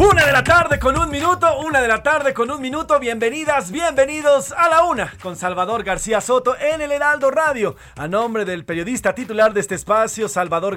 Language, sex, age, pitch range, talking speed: Spanish, male, 40-59, 175-235 Hz, 200 wpm